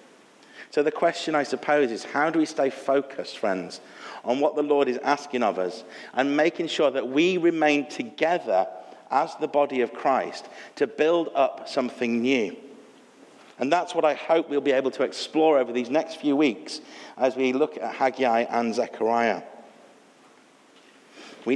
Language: English